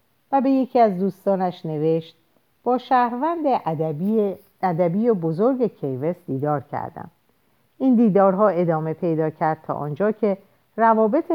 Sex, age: female, 50-69